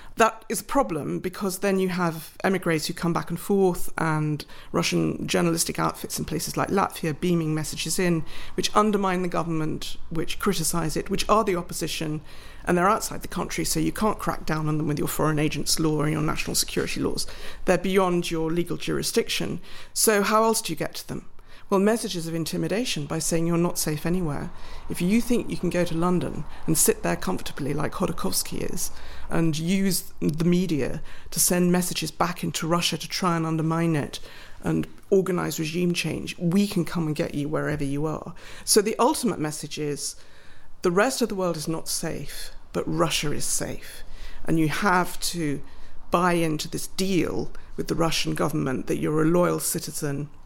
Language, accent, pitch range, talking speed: English, British, 155-185 Hz, 190 wpm